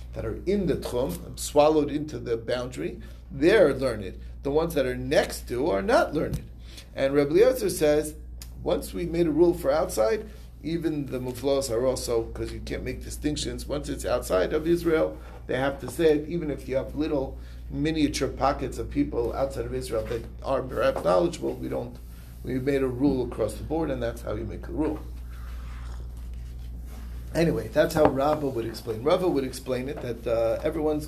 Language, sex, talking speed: English, male, 185 wpm